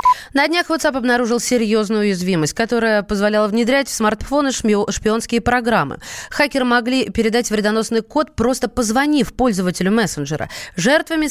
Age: 20-39